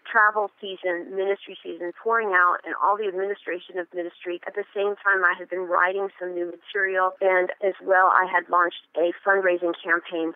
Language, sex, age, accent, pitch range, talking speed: English, female, 30-49, American, 175-215 Hz, 185 wpm